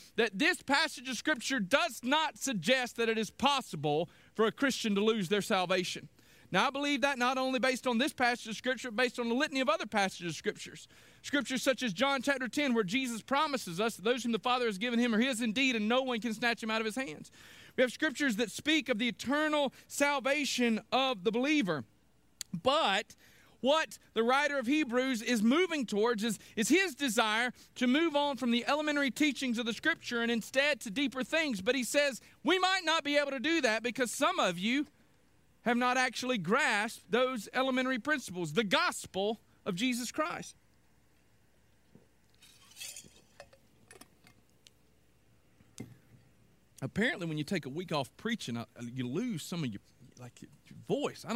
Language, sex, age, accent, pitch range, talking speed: English, male, 40-59, American, 220-275 Hz, 180 wpm